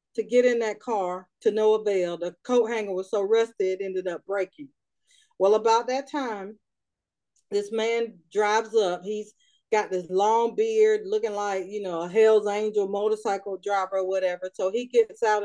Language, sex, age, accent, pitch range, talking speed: English, female, 40-59, American, 195-260 Hz, 180 wpm